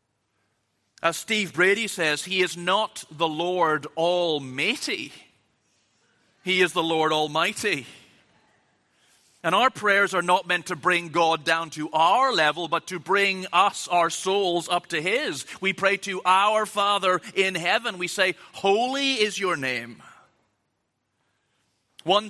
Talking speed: 135 wpm